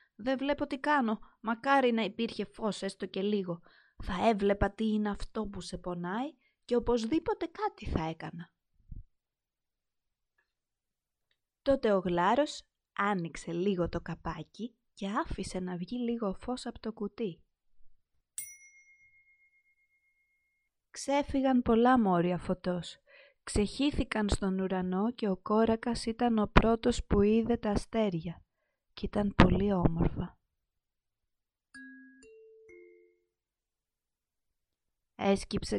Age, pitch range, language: 30-49, 185-245 Hz, Greek